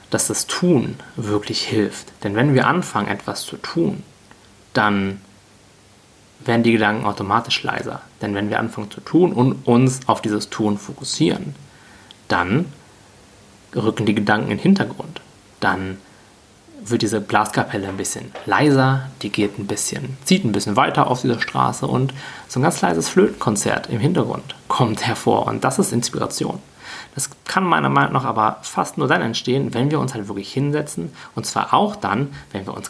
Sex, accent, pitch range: male, German, 105-135 Hz